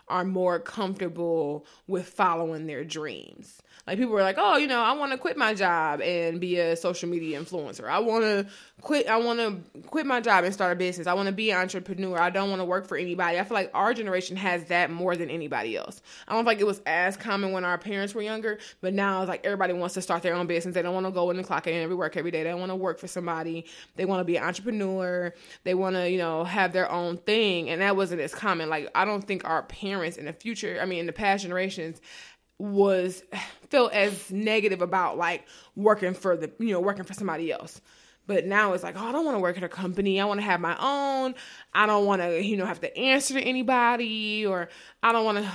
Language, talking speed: English, 240 wpm